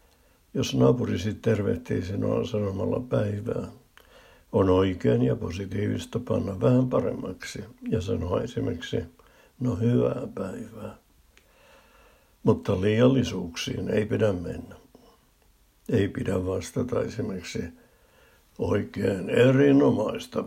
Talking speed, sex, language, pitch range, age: 90 wpm, male, Finnish, 100-125 Hz, 60-79